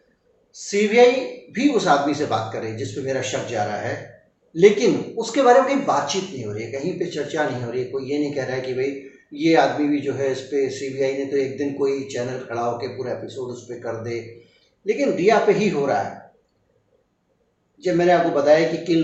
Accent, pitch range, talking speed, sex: native, 135-190 Hz, 230 wpm, male